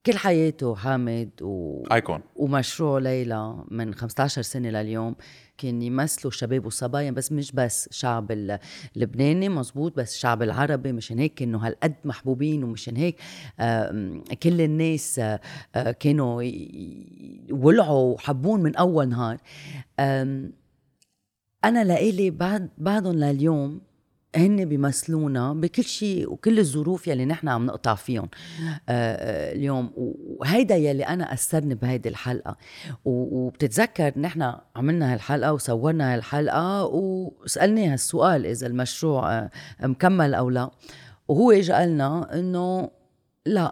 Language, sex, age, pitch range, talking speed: Arabic, female, 30-49, 120-160 Hz, 110 wpm